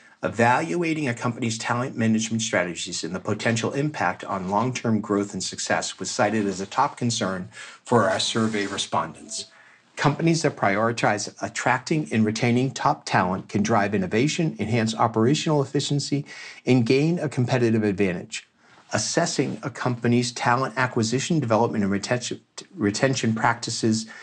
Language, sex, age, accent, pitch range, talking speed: English, male, 50-69, American, 100-130 Hz, 130 wpm